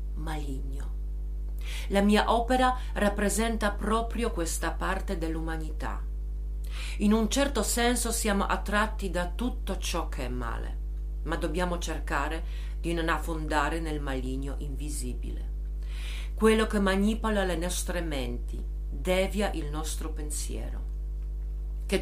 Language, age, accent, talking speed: Italian, 50-69, native, 110 wpm